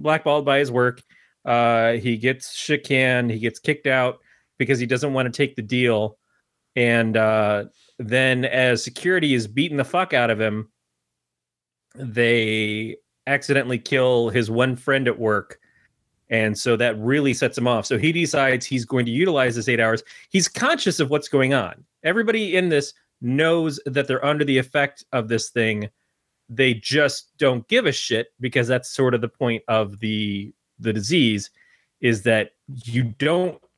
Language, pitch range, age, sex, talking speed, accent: English, 110-135 Hz, 30-49, male, 170 wpm, American